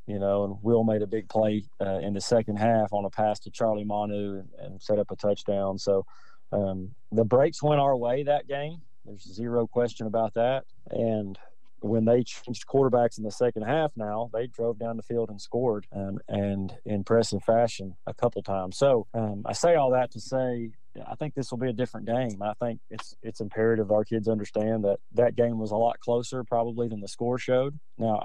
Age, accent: 30-49, American